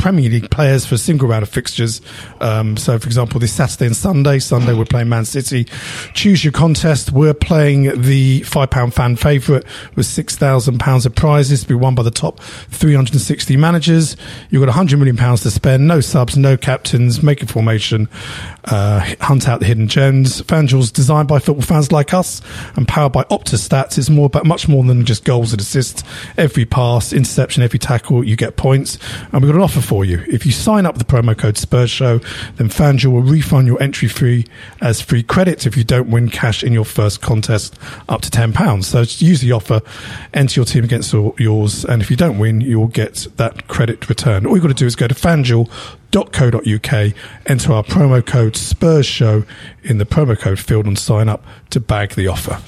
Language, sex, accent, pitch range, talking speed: English, male, British, 115-140 Hz, 210 wpm